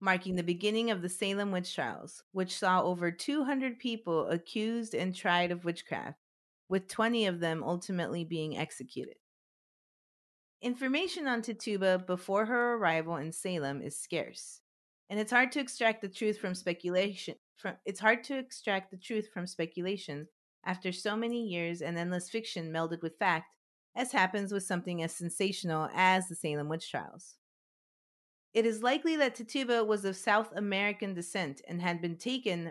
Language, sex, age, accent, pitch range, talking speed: English, female, 30-49, American, 170-220 Hz, 160 wpm